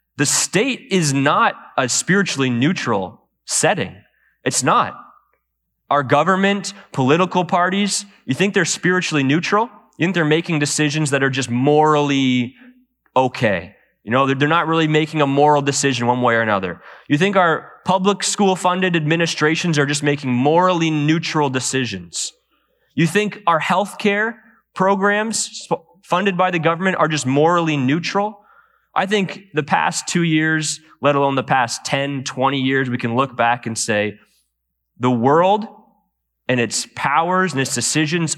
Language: English